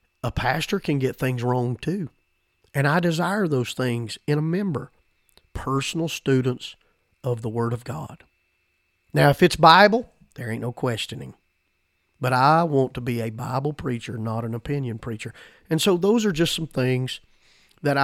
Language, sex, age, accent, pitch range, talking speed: English, male, 40-59, American, 120-140 Hz, 165 wpm